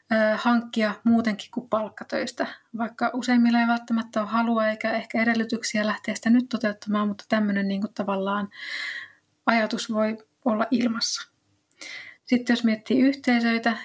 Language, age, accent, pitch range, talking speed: Finnish, 30-49, native, 210-235 Hz, 125 wpm